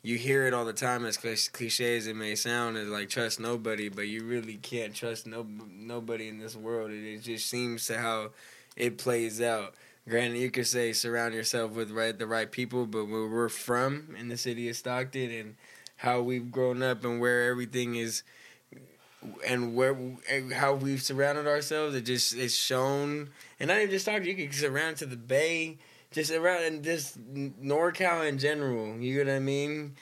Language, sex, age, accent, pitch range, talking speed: English, male, 10-29, American, 115-135 Hz, 195 wpm